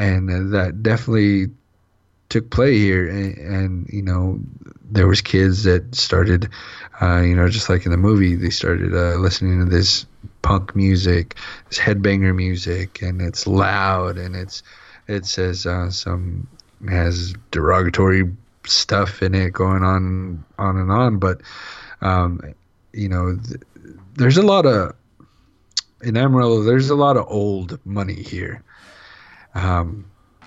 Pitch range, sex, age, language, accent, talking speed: 90-105 Hz, male, 30-49, English, American, 140 wpm